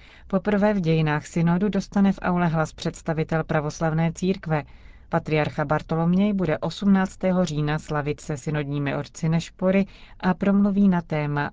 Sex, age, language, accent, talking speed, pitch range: female, 30-49, Czech, native, 130 wpm, 150-185 Hz